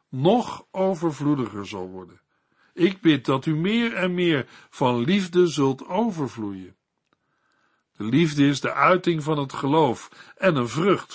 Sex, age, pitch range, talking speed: male, 60-79, 120-170 Hz, 140 wpm